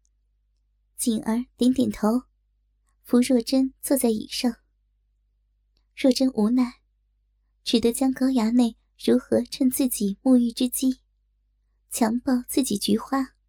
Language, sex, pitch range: Chinese, male, 240-290 Hz